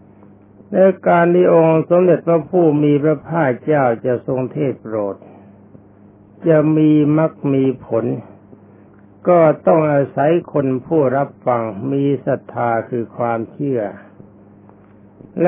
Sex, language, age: male, Thai, 60-79